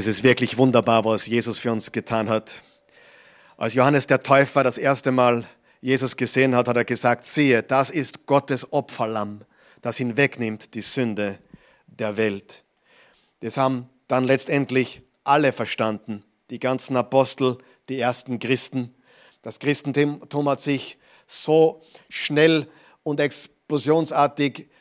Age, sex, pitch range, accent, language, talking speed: 50-69, male, 125-150 Hz, German, German, 130 wpm